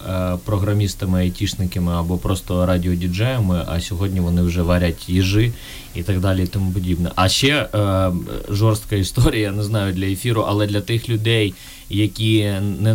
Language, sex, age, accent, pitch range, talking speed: Ukrainian, male, 20-39, native, 90-105 Hz, 145 wpm